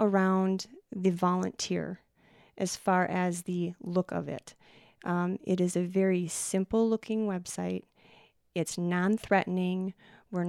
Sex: female